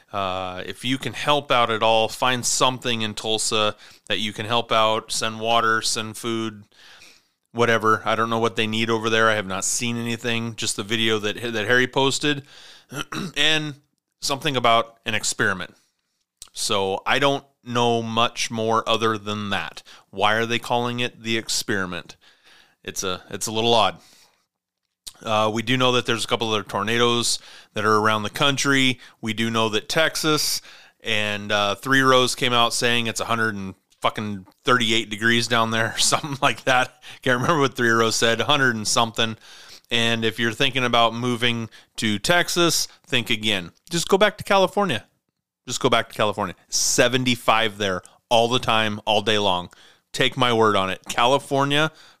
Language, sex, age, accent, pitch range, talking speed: English, male, 30-49, American, 110-125 Hz, 175 wpm